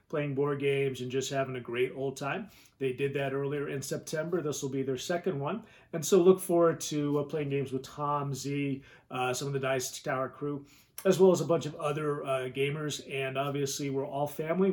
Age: 30-49